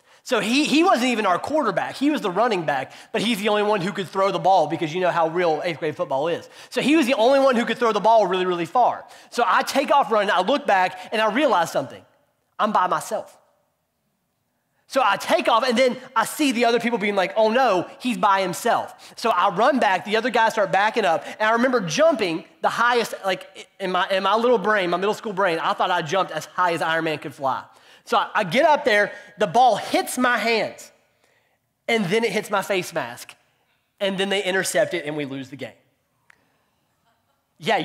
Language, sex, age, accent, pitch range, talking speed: English, male, 30-49, American, 185-245 Hz, 230 wpm